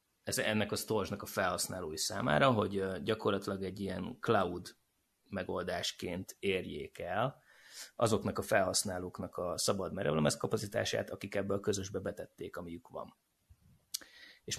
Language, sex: Hungarian, male